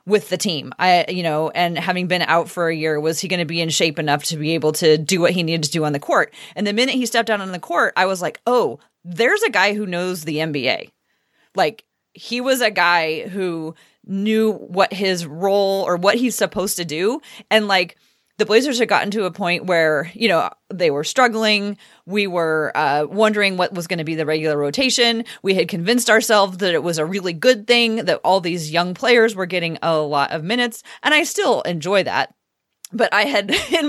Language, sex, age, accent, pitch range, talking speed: English, female, 30-49, American, 175-220 Hz, 225 wpm